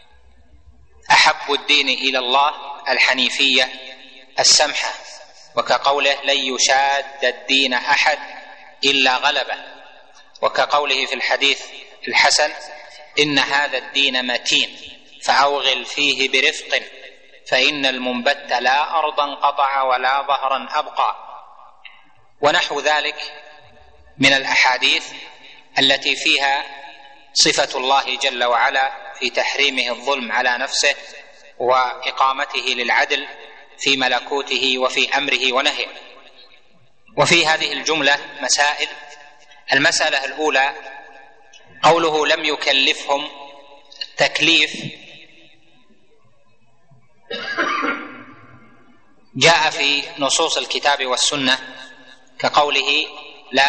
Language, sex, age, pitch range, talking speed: Arabic, male, 30-49, 130-145 Hz, 80 wpm